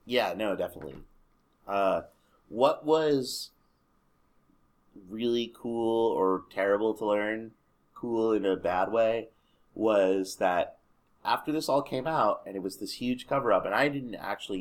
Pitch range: 100-135 Hz